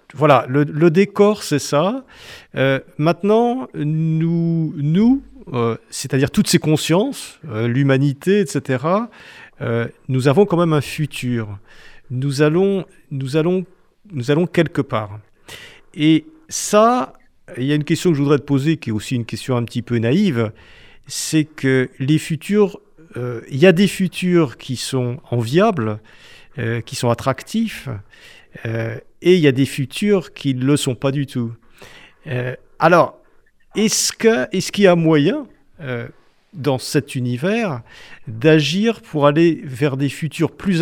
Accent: French